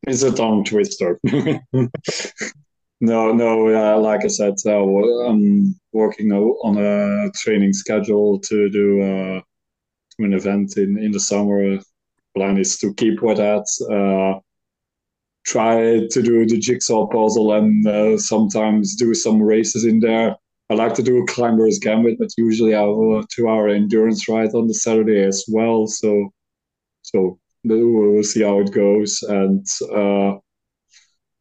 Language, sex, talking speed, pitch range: English, male, 140 wpm, 100-115 Hz